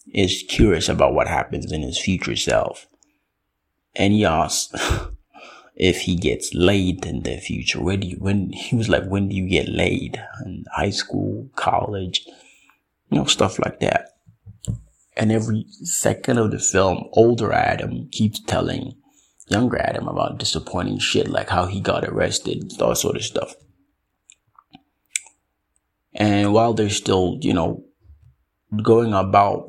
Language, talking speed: English, 145 wpm